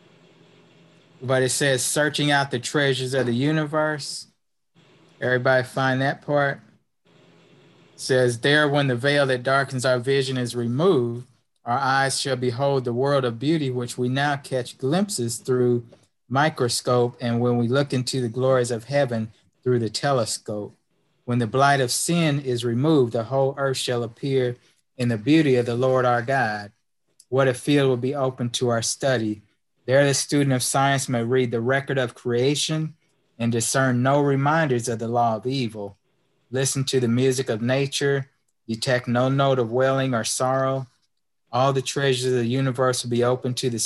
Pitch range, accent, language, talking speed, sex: 120-135 Hz, American, English, 170 wpm, male